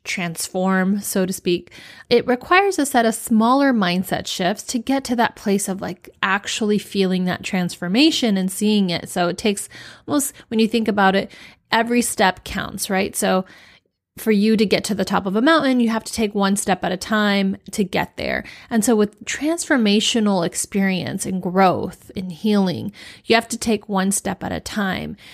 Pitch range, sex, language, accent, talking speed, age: 190-230 Hz, female, English, American, 190 wpm, 30-49